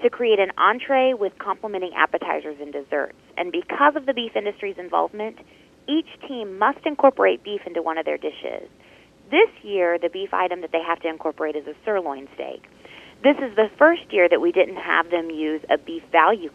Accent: American